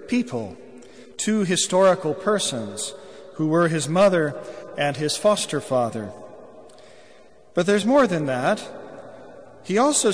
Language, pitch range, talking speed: English, 140-190 Hz, 110 wpm